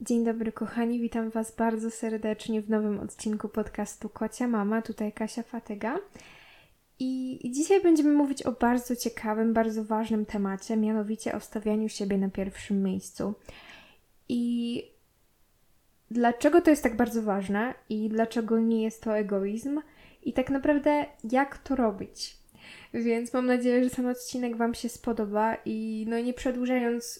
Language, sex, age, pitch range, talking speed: Polish, female, 10-29, 215-255 Hz, 145 wpm